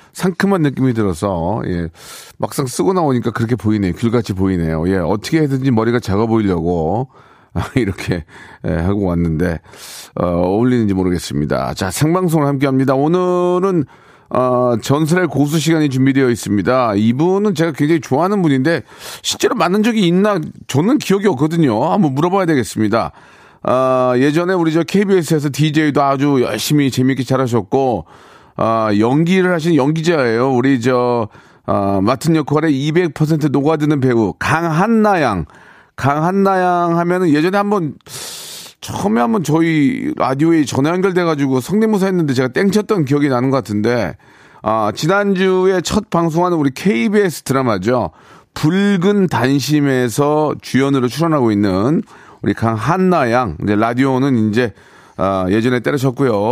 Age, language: 40-59, Korean